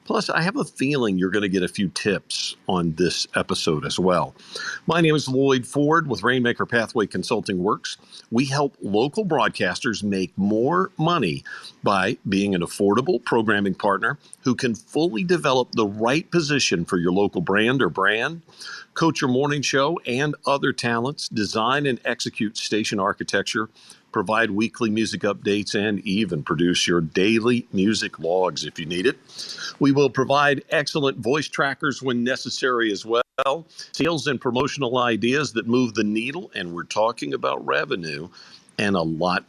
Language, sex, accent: English, male, American